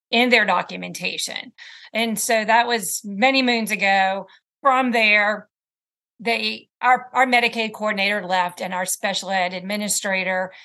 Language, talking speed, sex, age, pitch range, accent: English, 130 wpm, female, 40-59, 195-240 Hz, American